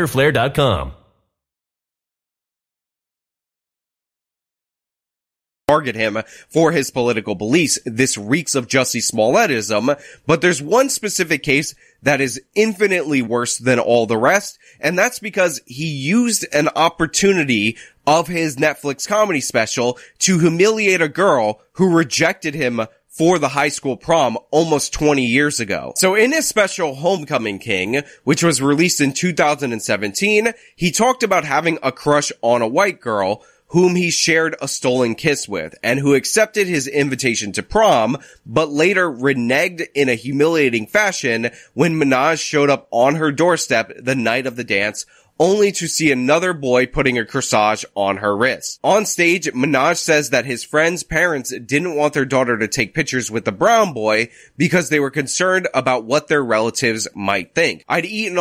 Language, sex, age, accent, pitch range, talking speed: English, male, 20-39, American, 125-170 Hz, 150 wpm